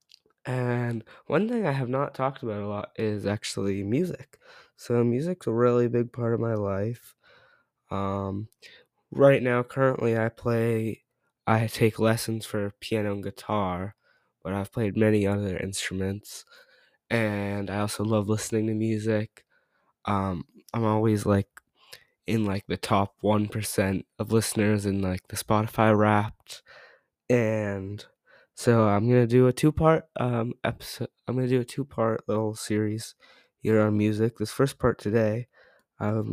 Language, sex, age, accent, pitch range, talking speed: English, male, 20-39, American, 100-120 Hz, 150 wpm